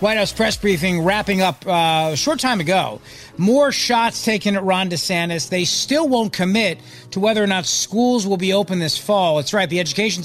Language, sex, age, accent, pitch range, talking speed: English, male, 40-59, American, 160-220 Hz, 205 wpm